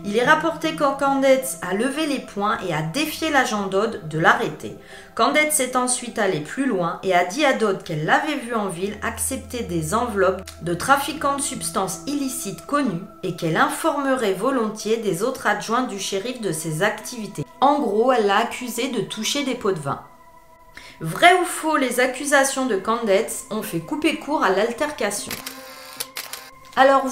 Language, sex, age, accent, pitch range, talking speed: French, female, 30-49, French, 195-270 Hz, 175 wpm